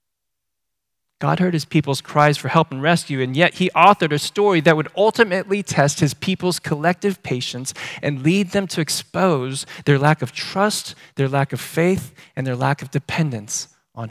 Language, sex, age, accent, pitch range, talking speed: English, male, 20-39, American, 135-175 Hz, 180 wpm